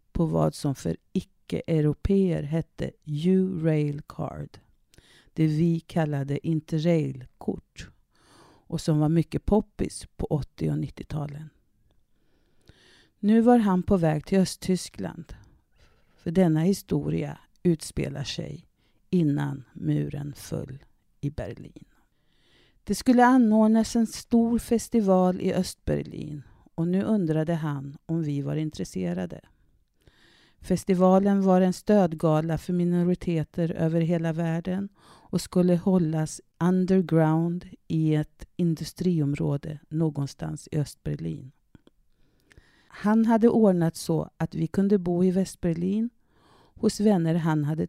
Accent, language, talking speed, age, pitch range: native, Swedish, 110 wpm, 50-69, 150-185 Hz